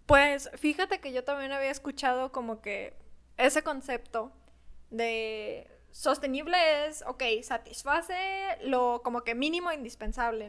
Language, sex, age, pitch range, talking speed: Spanish, female, 20-39, 240-280 Hz, 120 wpm